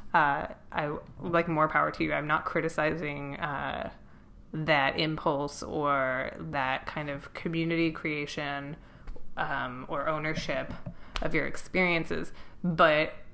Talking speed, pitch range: 115 wpm, 155-185 Hz